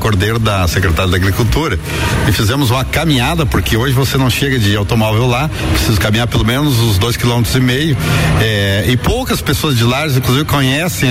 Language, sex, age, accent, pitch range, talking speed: Portuguese, male, 50-69, Brazilian, 110-145 Hz, 185 wpm